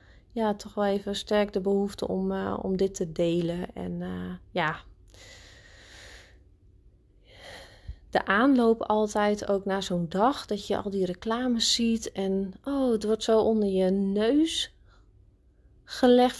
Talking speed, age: 135 wpm, 30-49